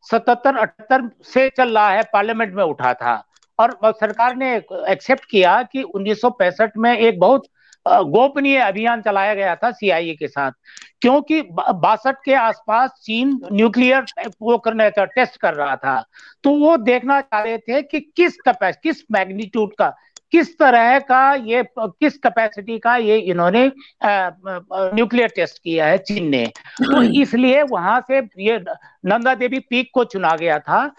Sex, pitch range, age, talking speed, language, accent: male, 210-265 Hz, 60-79, 150 wpm, Hindi, native